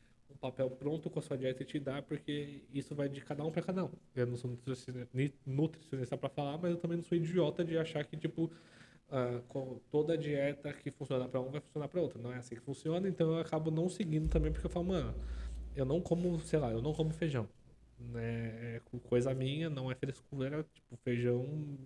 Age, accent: 20-39, Brazilian